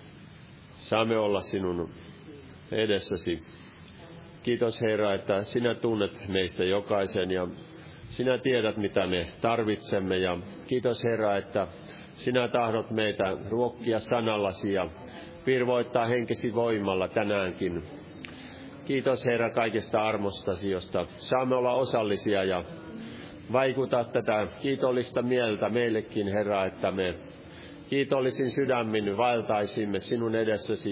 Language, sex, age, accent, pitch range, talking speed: Finnish, male, 40-59, native, 100-130 Hz, 105 wpm